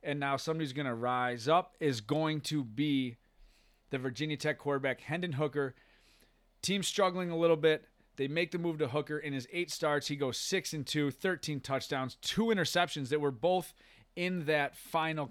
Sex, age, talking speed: male, 30-49, 185 wpm